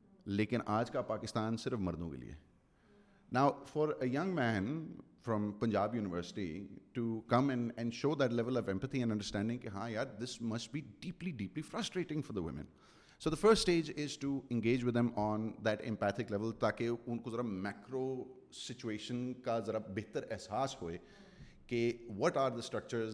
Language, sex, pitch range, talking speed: Urdu, male, 100-130 Hz, 175 wpm